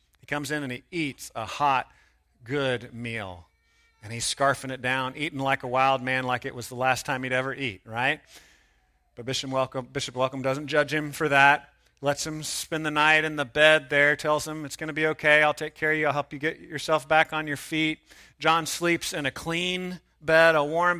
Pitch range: 125-165 Hz